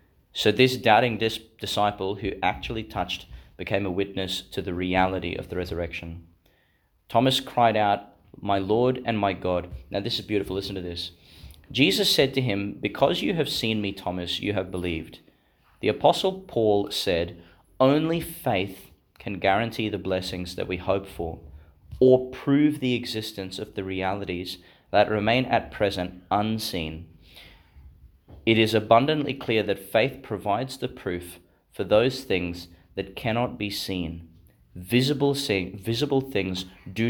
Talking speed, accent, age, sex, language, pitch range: 145 wpm, Australian, 30-49, male, English, 90-115 Hz